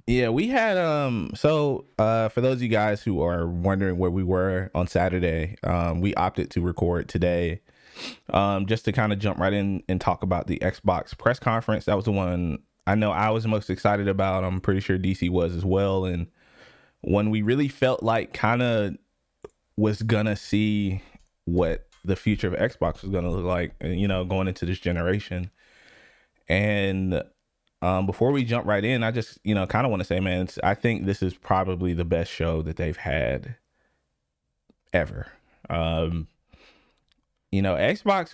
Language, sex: English, male